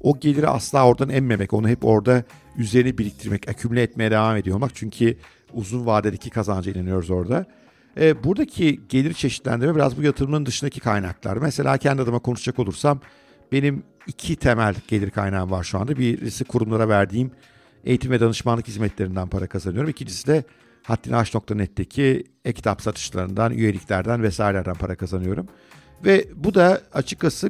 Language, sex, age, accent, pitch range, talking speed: Turkish, male, 50-69, native, 105-135 Hz, 140 wpm